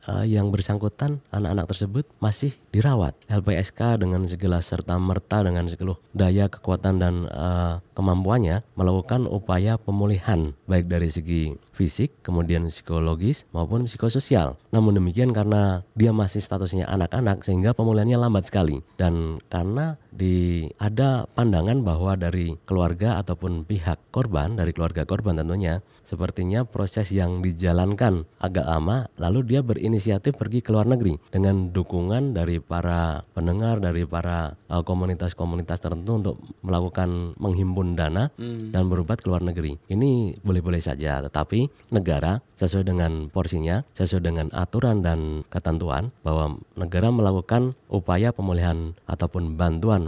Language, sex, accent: Indonesian, male, native